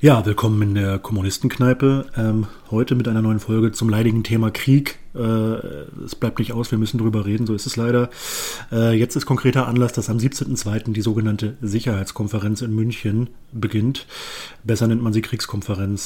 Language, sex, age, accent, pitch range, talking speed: German, male, 30-49, German, 110-125 Hz, 170 wpm